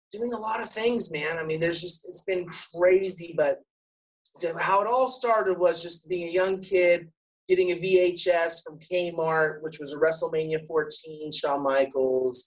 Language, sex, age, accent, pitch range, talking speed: English, male, 20-39, American, 135-185 Hz, 175 wpm